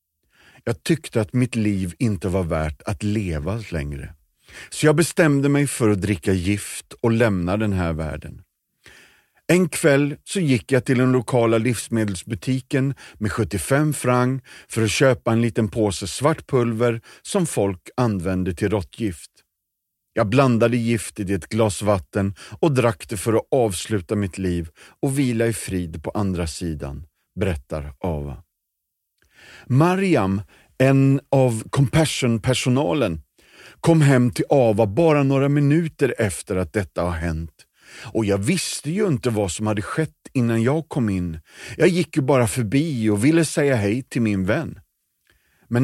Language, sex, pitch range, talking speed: Swedish, male, 100-140 Hz, 150 wpm